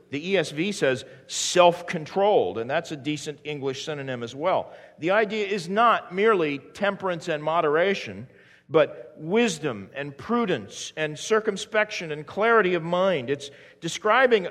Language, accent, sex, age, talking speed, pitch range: English, American, male, 50-69, 130 wpm, 130-190 Hz